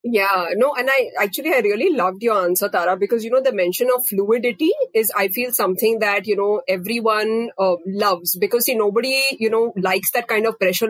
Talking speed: 205 wpm